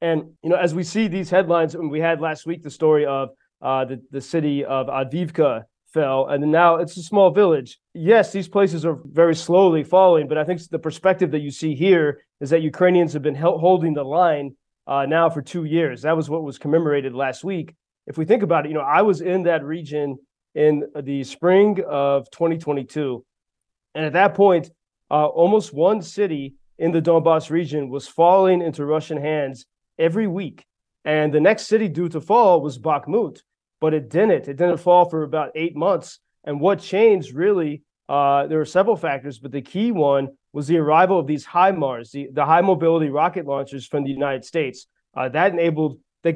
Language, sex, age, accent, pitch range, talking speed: English, male, 30-49, American, 145-175 Hz, 200 wpm